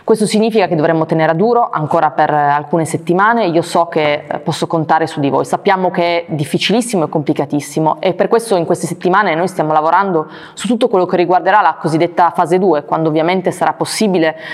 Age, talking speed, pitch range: 20-39, 200 wpm, 155-180 Hz